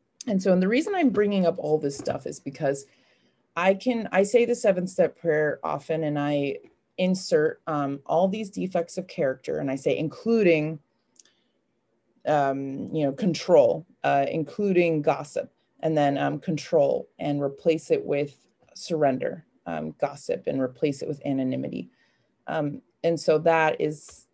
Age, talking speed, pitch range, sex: 30-49, 155 wpm, 150-195 Hz, female